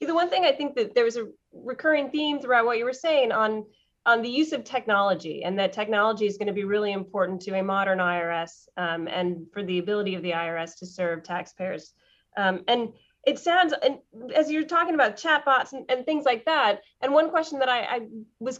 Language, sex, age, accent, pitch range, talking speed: English, female, 30-49, American, 185-250 Hz, 220 wpm